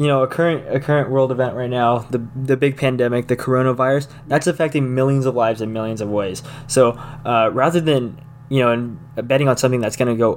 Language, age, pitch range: English, 20-39, 120-145 Hz